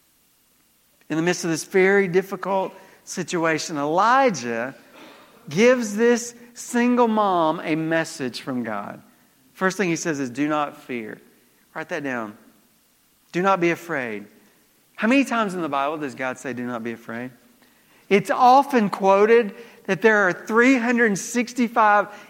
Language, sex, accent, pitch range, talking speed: English, male, American, 190-255 Hz, 140 wpm